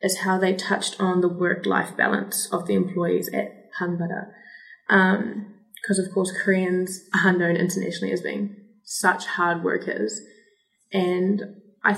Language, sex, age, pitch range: Korean, female, 10-29, 175-205 Hz